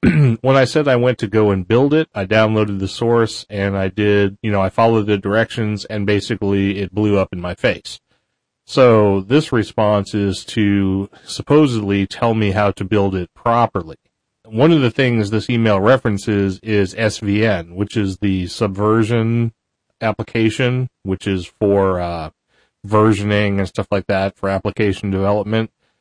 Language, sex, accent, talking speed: English, male, American, 160 wpm